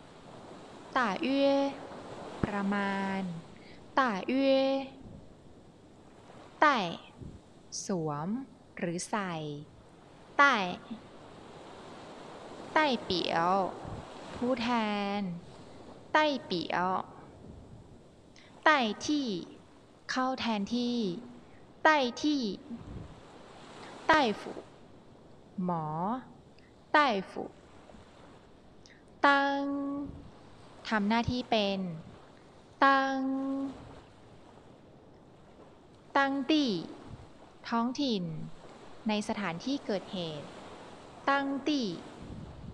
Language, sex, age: Thai, female, 20-39